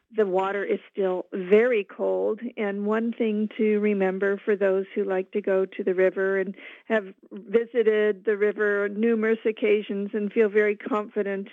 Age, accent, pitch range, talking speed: 50-69, American, 190-215 Hz, 165 wpm